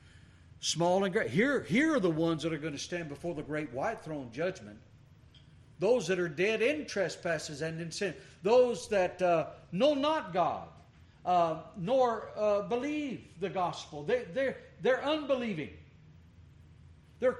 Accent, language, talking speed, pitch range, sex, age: American, English, 150 wpm, 135-205 Hz, male, 60-79